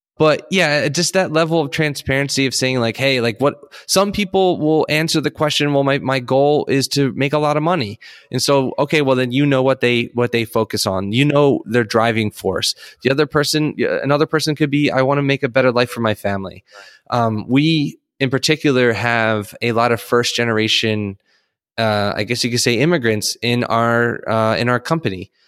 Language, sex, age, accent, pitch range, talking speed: English, male, 20-39, American, 115-145 Hz, 205 wpm